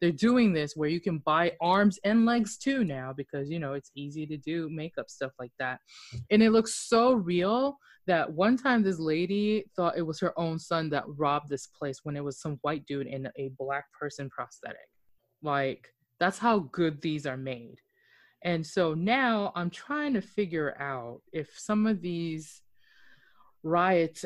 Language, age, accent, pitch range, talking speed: English, 20-39, American, 140-175 Hz, 185 wpm